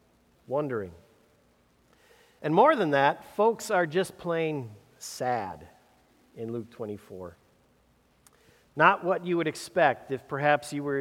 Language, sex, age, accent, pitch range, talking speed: English, male, 50-69, American, 135-175 Hz, 120 wpm